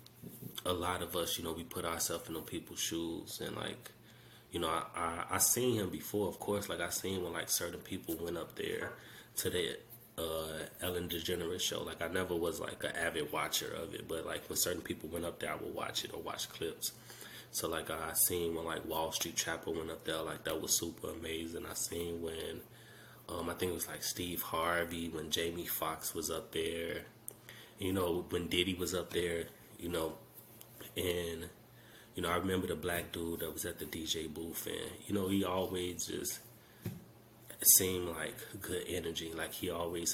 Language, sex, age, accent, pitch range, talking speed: English, male, 20-39, American, 85-95 Hz, 205 wpm